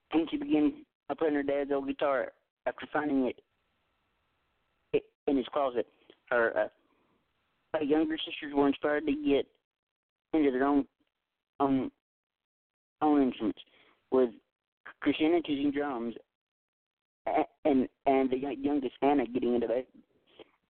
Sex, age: male, 40-59